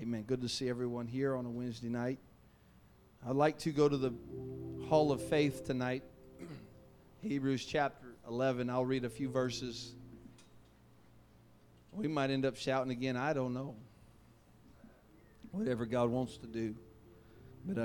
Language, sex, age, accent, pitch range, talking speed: English, male, 40-59, American, 120-145 Hz, 145 wpm